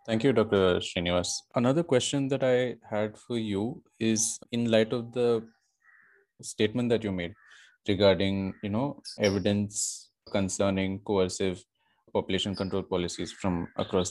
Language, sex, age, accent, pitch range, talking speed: English, male, 20-39, Indian, 95-115 Hz, 130 wpm